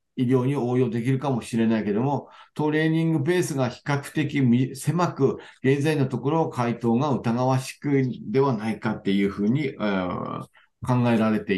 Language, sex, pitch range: Japanese, male, 115-140 Hz